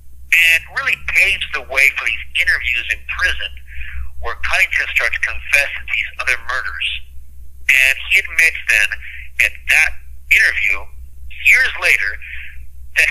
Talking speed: 125 wpm